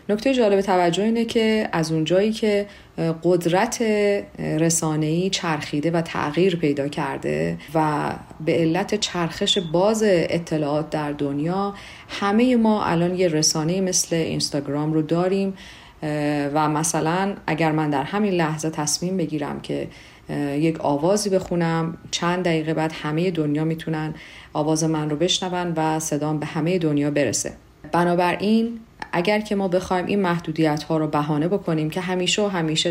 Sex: female